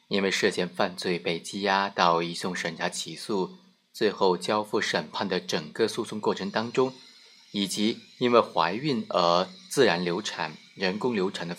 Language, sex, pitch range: Chinese, male, 100-140 Hz